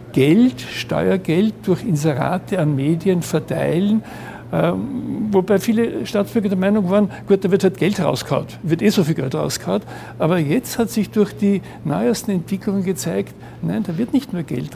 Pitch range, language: 155-195 Hz, German